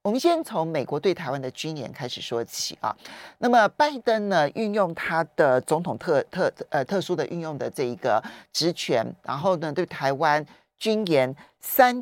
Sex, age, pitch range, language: male, 40-59, 145-235 Hz, Chinese